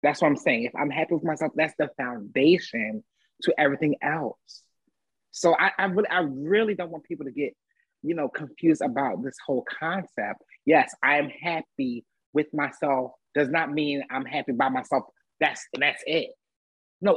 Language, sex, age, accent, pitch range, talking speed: English, male, 30-49, American, 150-205 Hz, 175 wpm